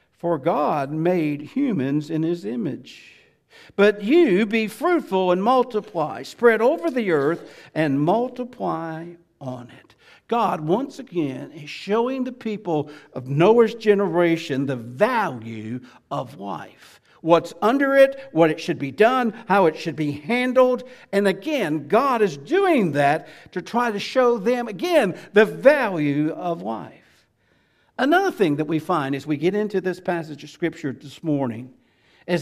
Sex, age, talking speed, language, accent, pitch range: male, 60-79, 150 wpm, English, American, 150-235 Hz